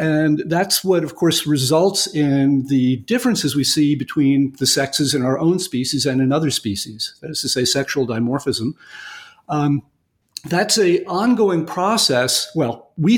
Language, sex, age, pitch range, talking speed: English, male, 50-69, 140-175 Hz, 160 wpm